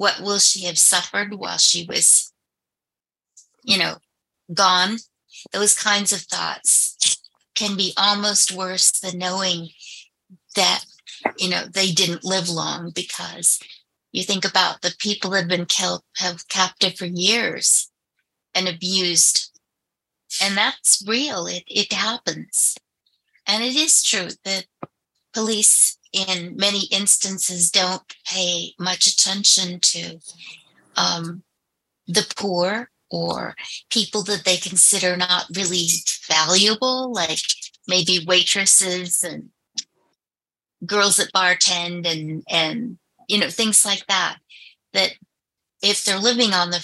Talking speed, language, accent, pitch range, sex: 120 wpm, English, American, 180-210 Hz, female